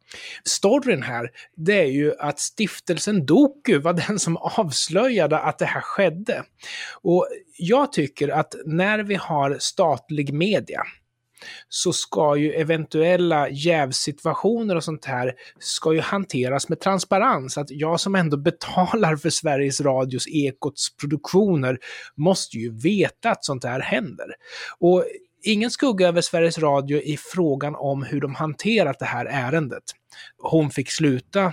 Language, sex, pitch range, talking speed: Swedish, male, 130-180 Hz, 140 wpm